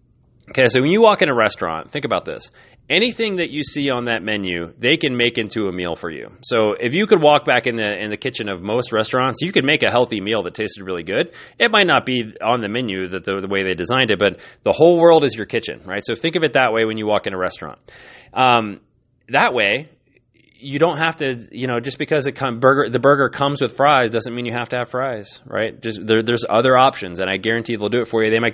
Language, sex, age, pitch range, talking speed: English, male, 30-49, 105-135 Hz, 265 wpm